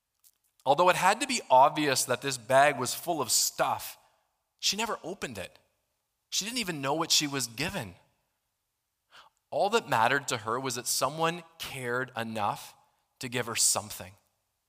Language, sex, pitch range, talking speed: English, male, 115-160 Hz, 160 wpm